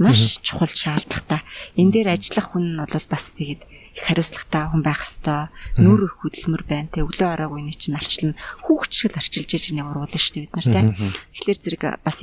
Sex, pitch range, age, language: female, 155-190 Hz, 30-49, Korean